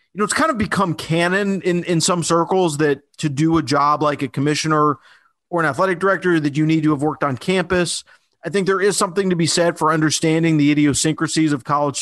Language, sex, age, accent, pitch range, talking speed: English, male, 40-59, American, 145-175 Hz, 225 wpm